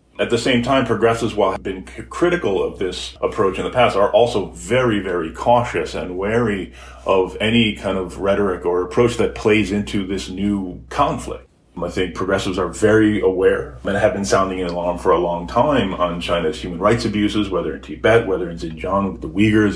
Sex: male